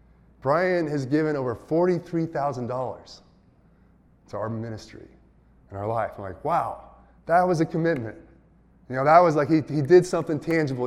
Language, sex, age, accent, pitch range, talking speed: English, male, 20-39, American, 120-165 Hz, 155 wpm